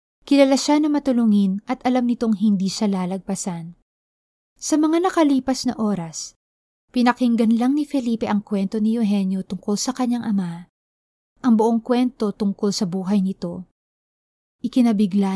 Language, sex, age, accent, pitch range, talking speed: Filipino, female, 20-39, native, 195-245 Hz, 135 wpm